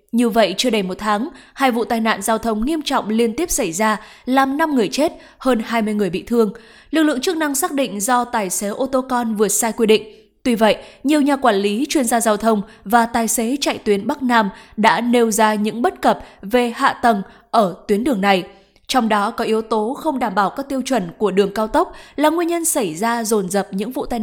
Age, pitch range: 20-39, 215-265 Hz